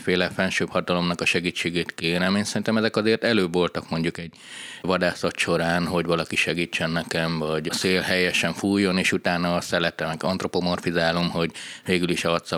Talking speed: 160 wpm